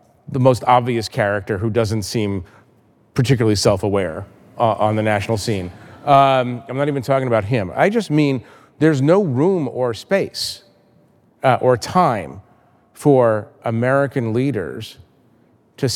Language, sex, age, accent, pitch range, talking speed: English, male, 40-59, American, 105-135 Hz, 130 wpm